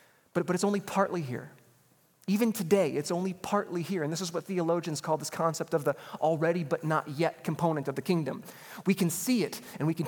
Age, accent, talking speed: 30-49, American, 220 wpm